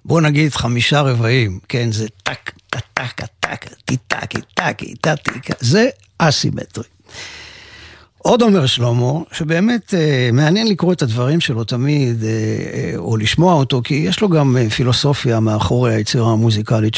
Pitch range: 115-155 Hz